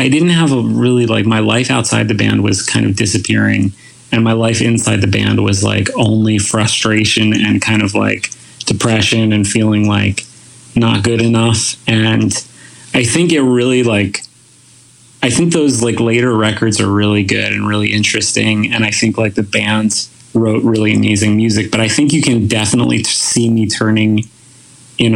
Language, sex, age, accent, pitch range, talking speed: English, male, 30-49, American, 105-120 Hz, 175 wpm